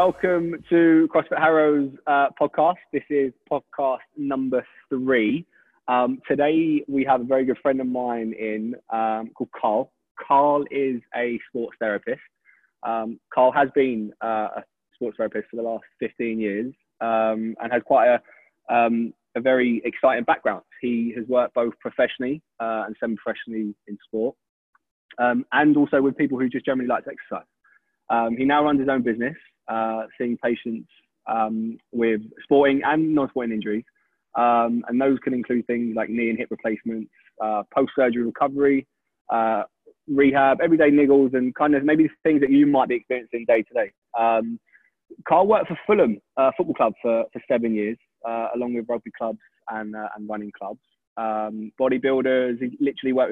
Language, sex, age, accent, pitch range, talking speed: English, male, 20-39, British, 115-140 Hz, 165 wpm